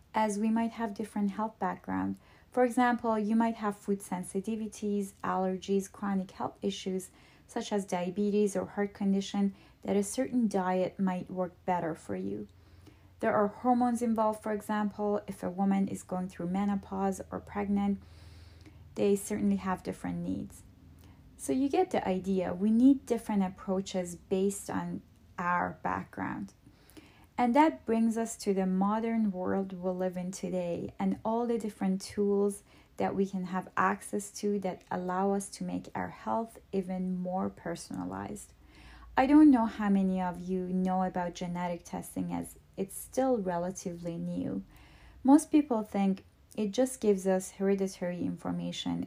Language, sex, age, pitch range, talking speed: English, female, 30-49, 175-210 Hz, 150 wpm